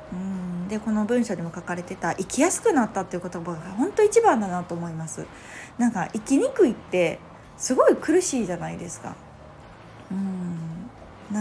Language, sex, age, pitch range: Japanese, female, 20-39, 180-255 Hz